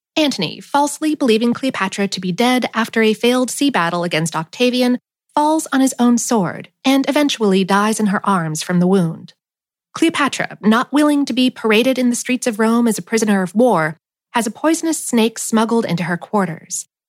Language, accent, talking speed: English, American, 185 wpm